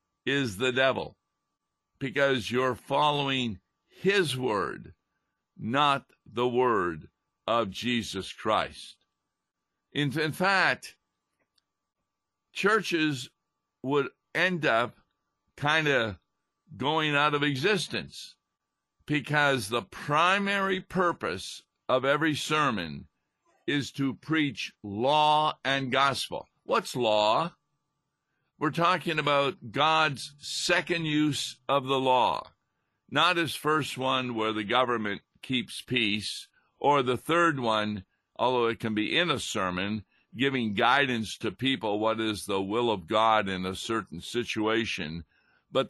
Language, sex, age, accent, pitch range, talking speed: English, male, 50-69, American, 110-150 Hz, 110 wpm